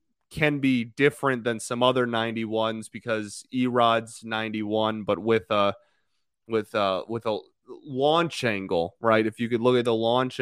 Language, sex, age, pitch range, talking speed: English, male, 20-39, 110-140 Hz, 155 wpm